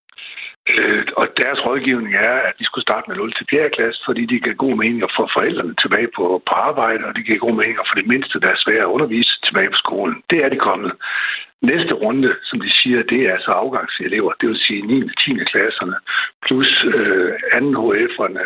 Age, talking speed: 60-79, 210 wpm